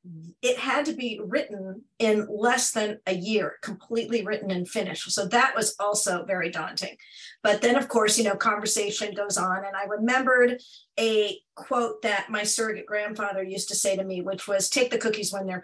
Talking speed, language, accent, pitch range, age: 190 wpm, English, American, 195-245 Hz, 50-69